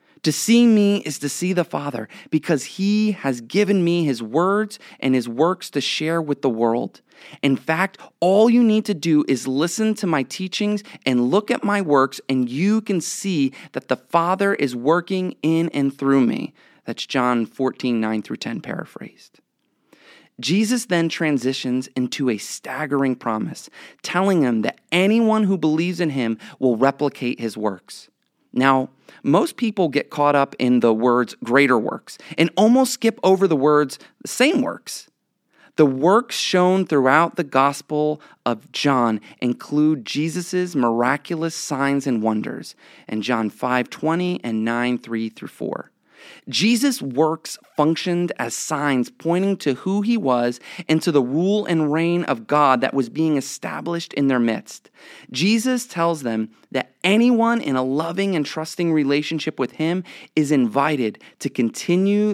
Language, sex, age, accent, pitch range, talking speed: English, male, 30-49, American, 130-180 Hz, 160 wpm